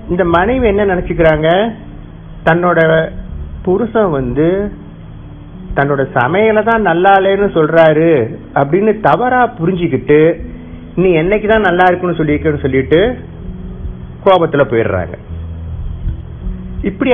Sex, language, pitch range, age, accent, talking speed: male, Tamil, 125-175 Hz, 50-69, native, 90 wpm